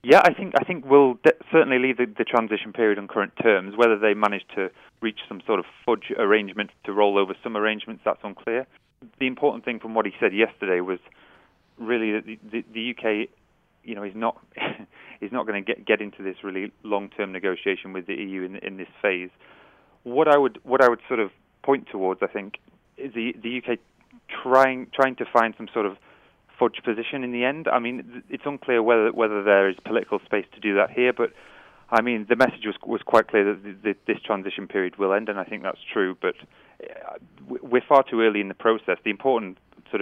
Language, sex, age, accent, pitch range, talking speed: English, male, 30-49, British, 95-120 Hz, 215 wpm